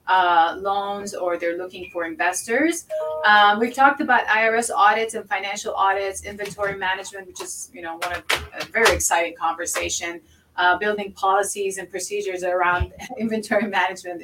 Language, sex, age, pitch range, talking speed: English, female, 30-49, 180-225 Hz, 150 wpm